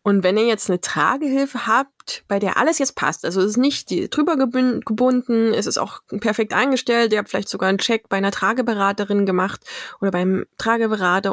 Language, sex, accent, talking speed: German, female, German, 190 wpm